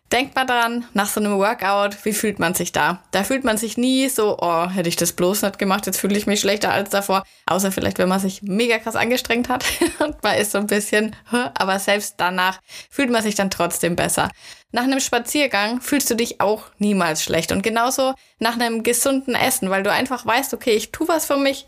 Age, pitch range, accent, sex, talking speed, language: 20-39, 195-250 Hz, German, female, 225 wpm, German